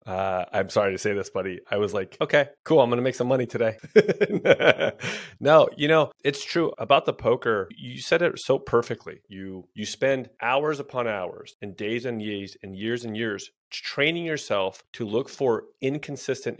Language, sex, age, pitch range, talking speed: English, male, 30-49, 100-135 Hz, 185 wpm